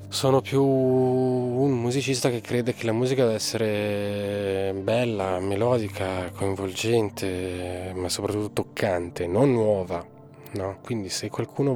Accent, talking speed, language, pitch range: native, 115 wpm, Italian, 100-125 Hz